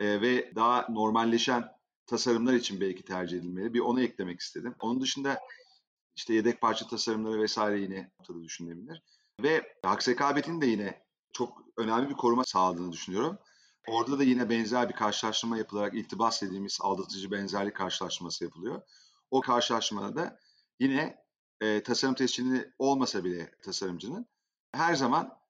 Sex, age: male, 40-59